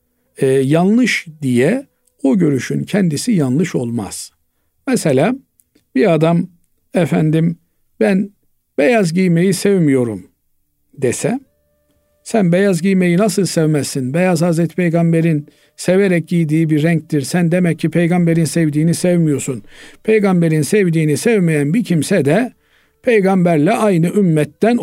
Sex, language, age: male, Turkish, 60-79